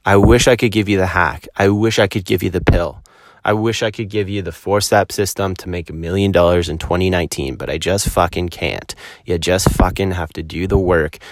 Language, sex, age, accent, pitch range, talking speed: English, male, 30-49, American, 90-110 Hz, 240 wpm